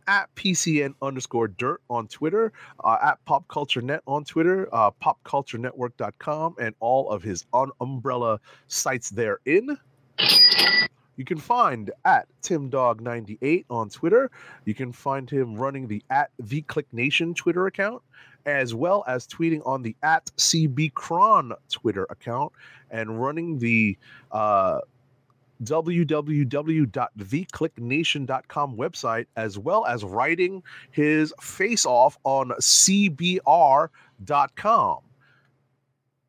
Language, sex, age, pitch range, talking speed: English, male, 30-49, 125-165 Hz, 115 wpm